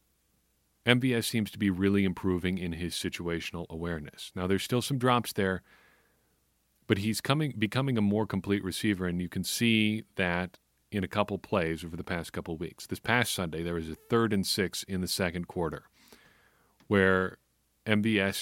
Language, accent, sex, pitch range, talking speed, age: English, American, male, 90-110 Hz, 175 wpm, 40-59